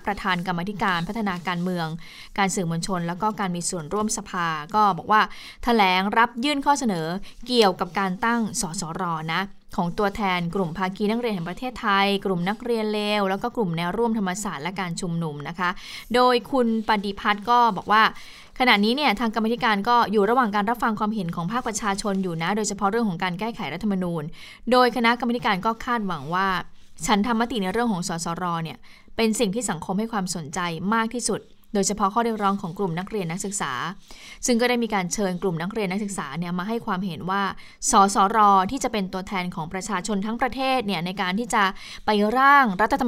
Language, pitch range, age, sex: Thai, 185-225 Hz, 20-39, female